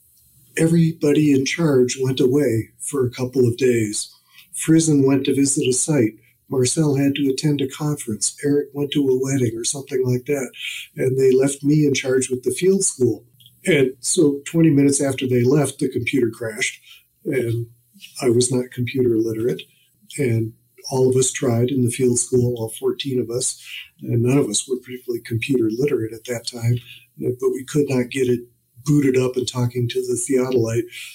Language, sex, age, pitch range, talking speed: English, male, 50-69, 120-135 Hz, 180 wpm